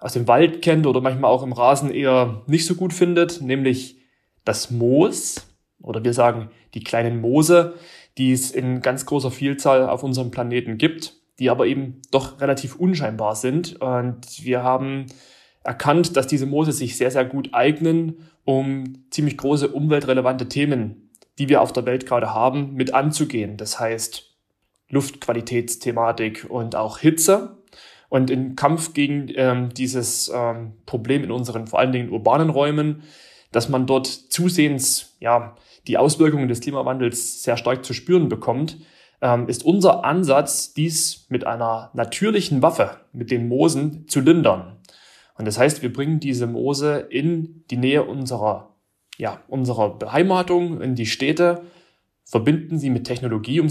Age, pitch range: 30-49, 120-150 Hz